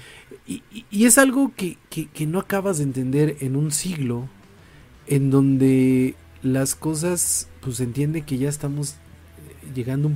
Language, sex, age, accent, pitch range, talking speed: Spanish, male, 40-59, Mexican, 110-145 Hz, 155 wpm